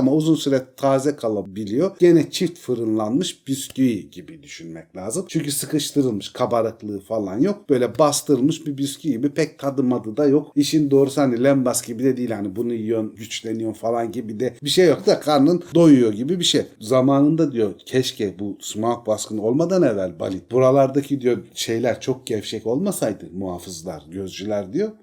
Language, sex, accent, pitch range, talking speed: Turkish, male, native, 105-145 Hz, 165 wpm